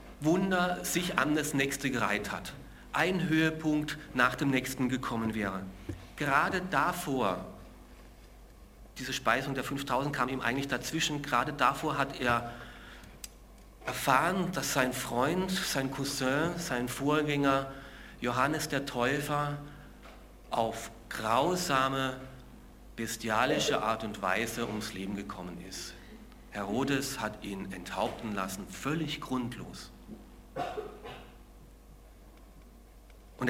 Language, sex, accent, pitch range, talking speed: German, male, German, 110-145 Hz, 100 wpm